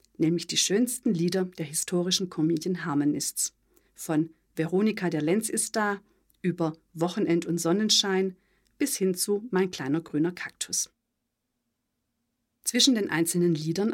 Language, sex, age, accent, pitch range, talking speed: German, female, 50-69, German, 165-205 Hz, 120 wpm